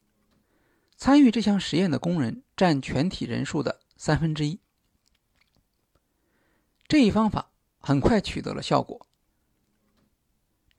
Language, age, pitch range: Chinese, 50-69, 135-215 Hz